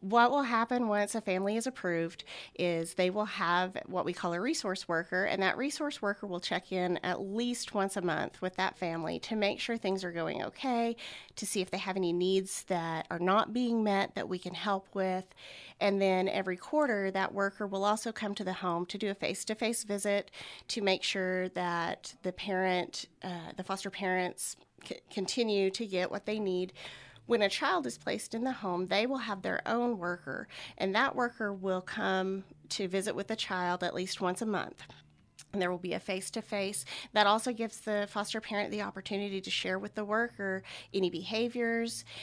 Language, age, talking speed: English, 30-49, 200 wpm